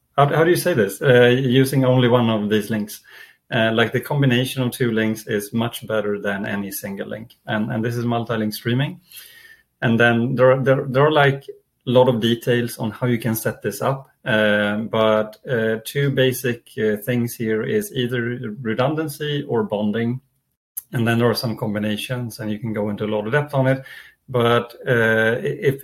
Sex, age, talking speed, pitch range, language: male, 30-49, 195 wpm, 110-130 Hz, English